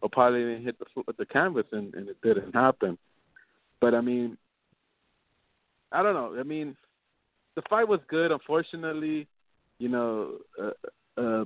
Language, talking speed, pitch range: English, 155 wpm, 115-140 Hz